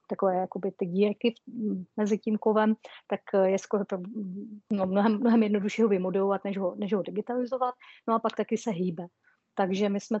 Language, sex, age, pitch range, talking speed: Czech, female, 30-49, 190-215 Hz, 160 wpm